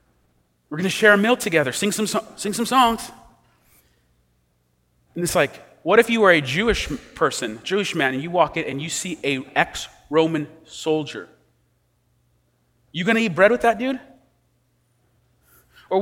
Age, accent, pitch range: 30-49, American, 140-195 Hz